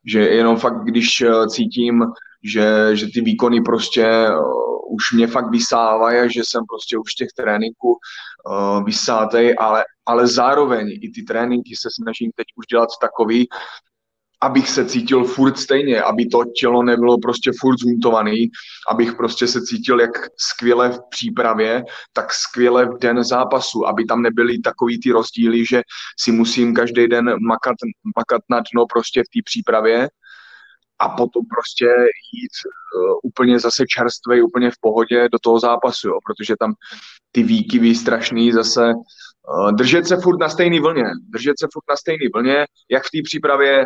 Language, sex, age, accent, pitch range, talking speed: Czech, male, 20-39, native, 115-135 Hz, 160 wpm